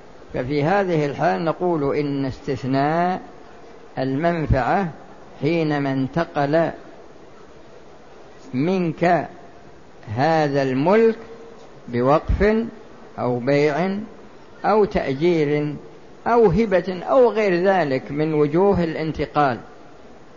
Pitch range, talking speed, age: 145-180 Hz, 75 wpm, 50-69